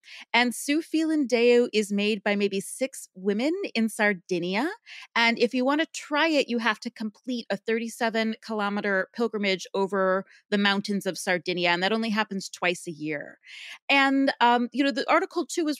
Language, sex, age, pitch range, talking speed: English, female, 30-49, 200-260 Hz, 170 wpm